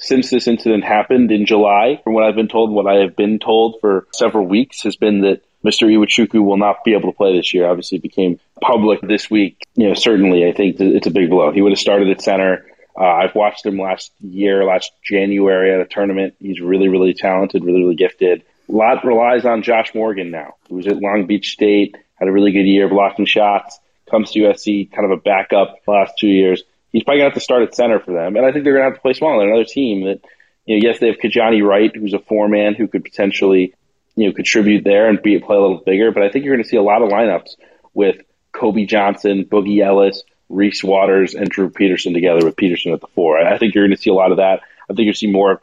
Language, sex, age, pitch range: English, male, 30-49, 95-110 Hz